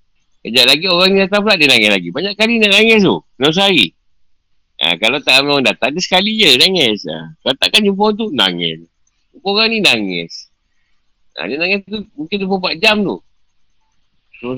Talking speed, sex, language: 190 wpm, male, Malay